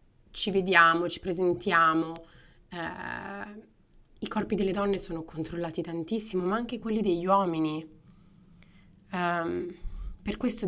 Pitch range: 165-205 Hz